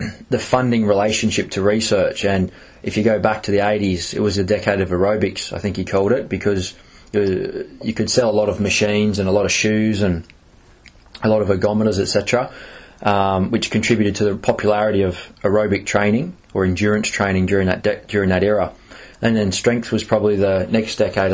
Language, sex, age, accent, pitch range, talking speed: English, male, 20-39, Australian, 100-110 Hz, 200 wpm